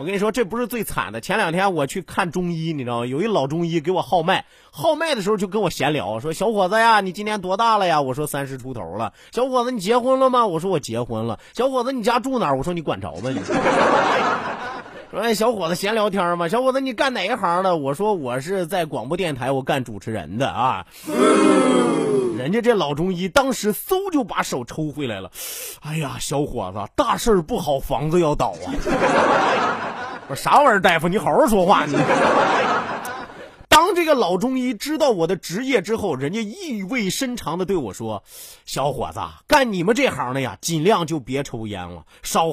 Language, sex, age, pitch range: Chinese, male, 30-49, 155-245 Hz